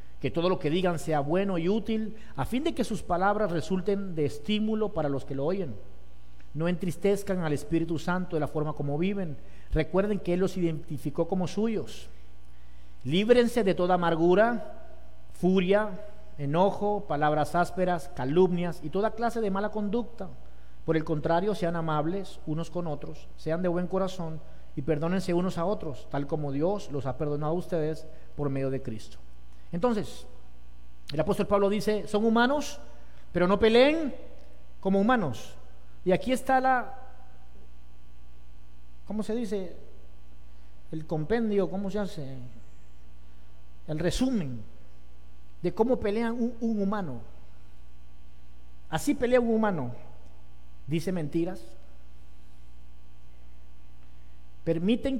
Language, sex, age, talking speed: Spanish, male, 50-69, 135 wpm